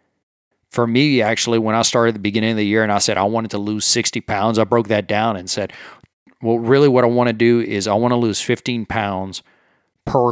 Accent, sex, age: American, male, 40-59